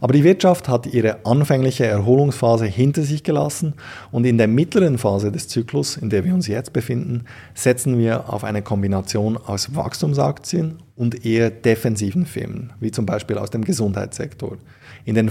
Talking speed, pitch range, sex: 165 wpm, 105-135 Hz, male